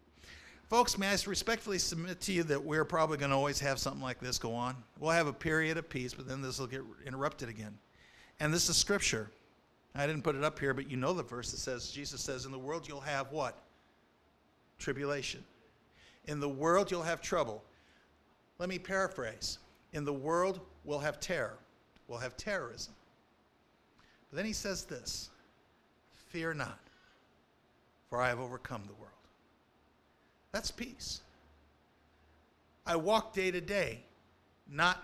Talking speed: 165 wpm